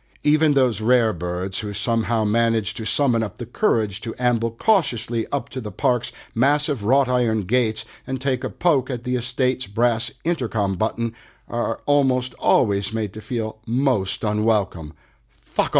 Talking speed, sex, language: 155 wpm, male, English